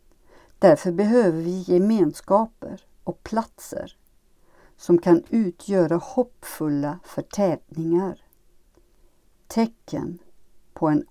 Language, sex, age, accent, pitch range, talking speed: Swedish, female, 60-79, native, 160-220 Hz, 75 wpm